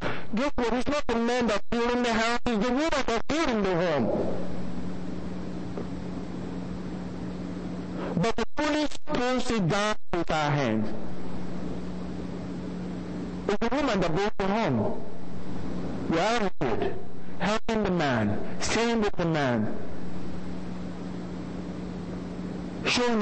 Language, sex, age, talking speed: English, male, 50-69, 115 wpm